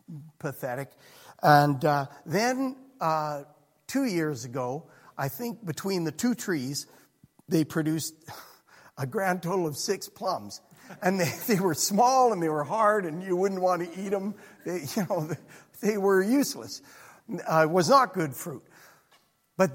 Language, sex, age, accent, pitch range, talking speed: English, male, 50-69, American, 150-230 Hz, 150 wpm